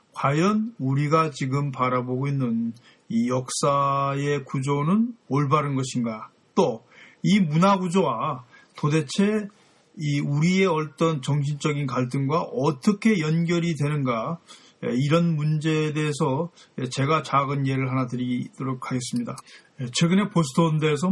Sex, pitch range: male, 135-165 Hz